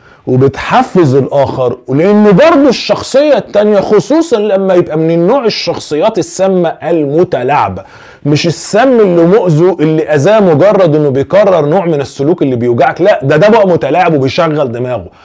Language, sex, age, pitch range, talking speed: Arabic, male, 30-49, 115-175 Hz, 135 wpm